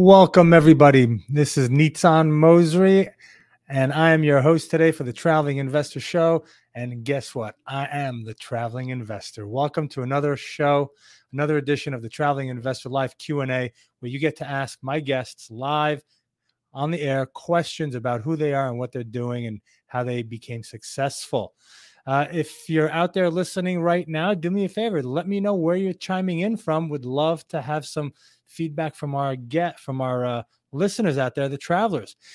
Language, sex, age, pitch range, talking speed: English, male, 30-49, 130-165 Hz, 185 wpm